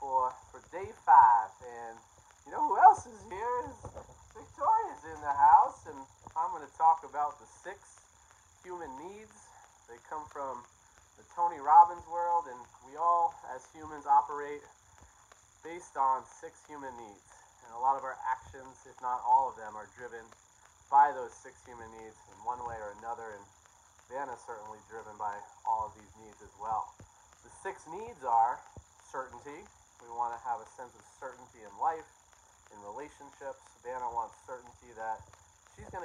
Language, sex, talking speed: English, male, 170 wpm